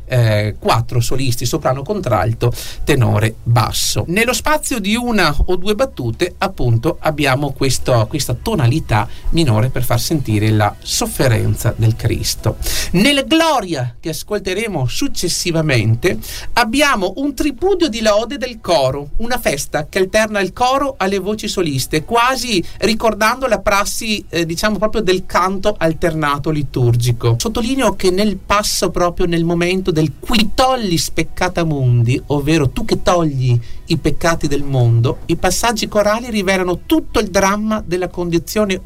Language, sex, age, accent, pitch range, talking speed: Italian, male, 40-59, native, 135-215 Hz, 135 wpm